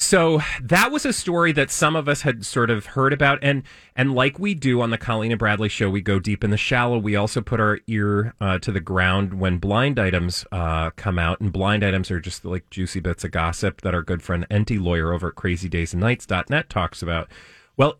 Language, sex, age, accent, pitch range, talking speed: English, male, 30-49, American, 95-135 Hz, 225 wpm